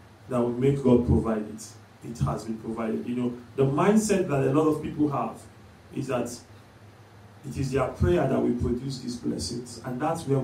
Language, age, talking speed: English, 40-59, 195 wpm